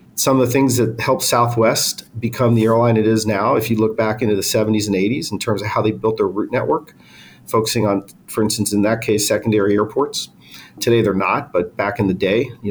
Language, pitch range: English, 105-120 Hz